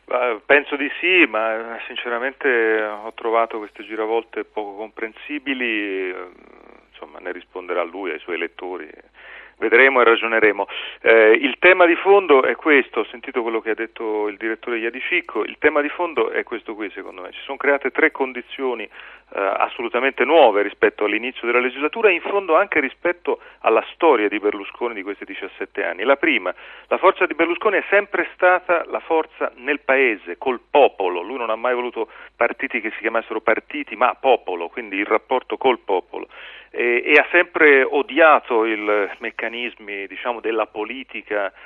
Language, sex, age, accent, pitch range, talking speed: Italian, male, 40-59, native, 110-170 Hz, 165 wpm